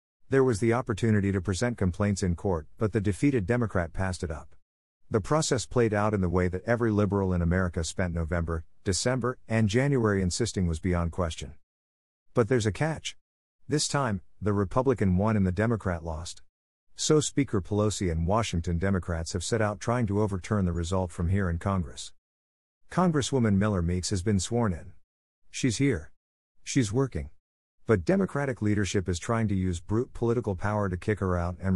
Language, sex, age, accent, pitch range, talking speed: English, male, 50-69, American, 85-115 Hz, 180 wpm